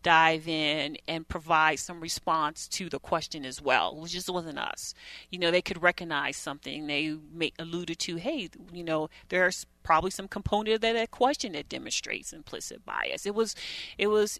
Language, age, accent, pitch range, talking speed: English, 30-49, American, 150-180 Hz, 180 wpm